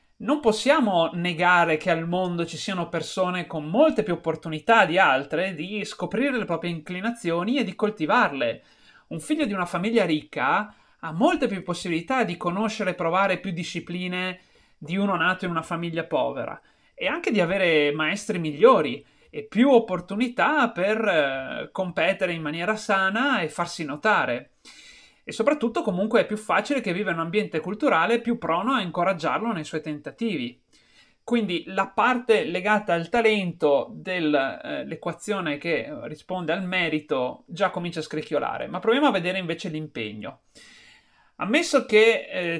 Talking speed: 150 wpm